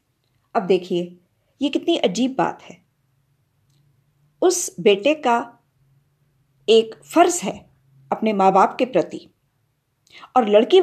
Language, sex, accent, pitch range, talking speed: Hindi, female, native, 185-300 Hz, 110 wpm